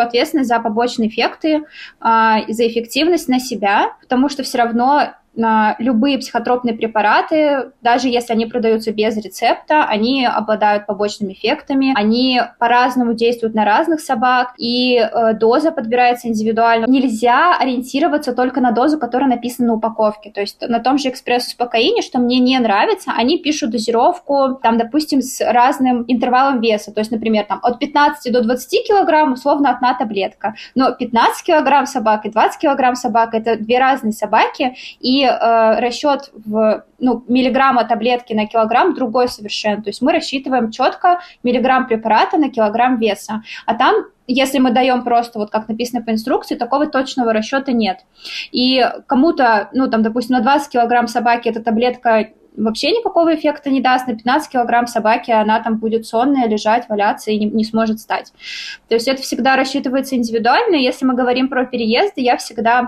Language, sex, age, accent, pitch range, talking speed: Russian, female, 20-39, native, 225-270 Hz, 160 wpm